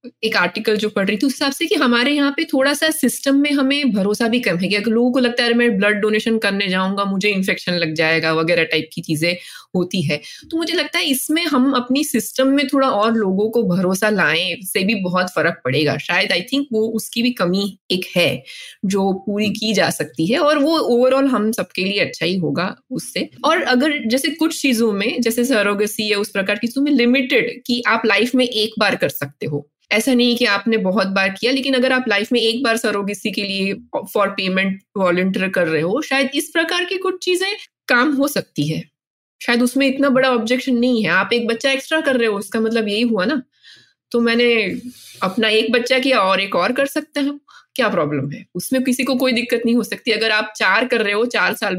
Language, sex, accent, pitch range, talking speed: Hindi, female, native, 195-260 Hz, 225 wpm